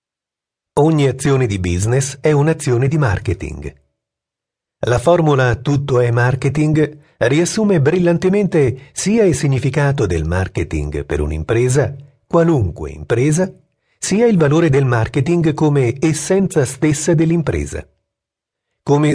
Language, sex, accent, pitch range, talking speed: Italian, male, native, 95-155 Hz, 105 wpm